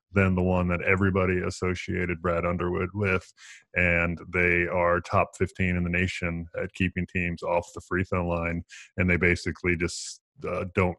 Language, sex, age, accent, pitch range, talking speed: English, male, 20-39, American, 90-105 Hz, 170 wpm